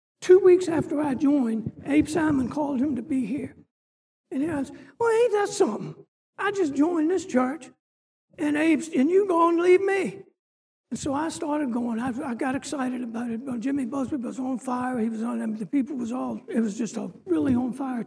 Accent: American